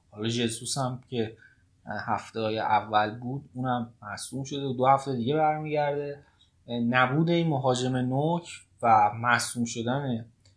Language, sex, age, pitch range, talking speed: Persian, male, 20-39, 110-135 Hz, 120 wpm